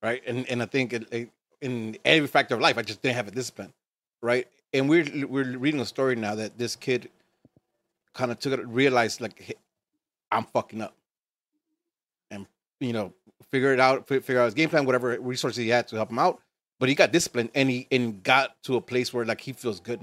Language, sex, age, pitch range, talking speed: English, male, 30-49, 115-135 Hz, 220 wpm